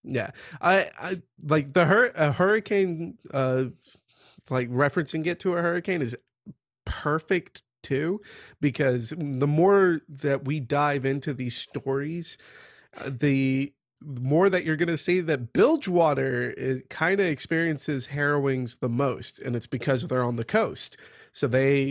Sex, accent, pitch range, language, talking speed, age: male, American, 130-180 Hz, English, 150 wpm, 30-49